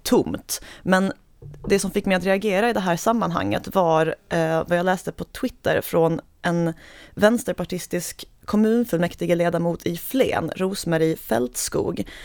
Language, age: Swedish, 30-49